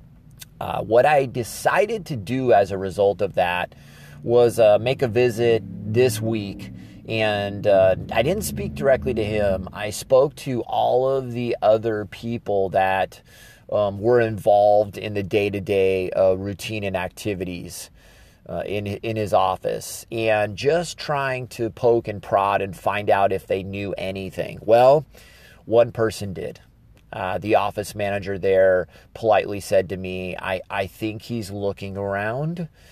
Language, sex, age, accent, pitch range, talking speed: English, male, 30-49, American, 95-115 Hz, 150 wpm